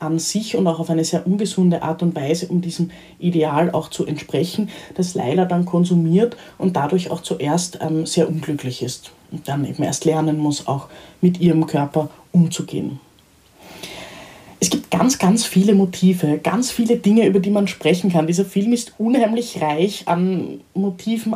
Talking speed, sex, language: 170 wpm, female, German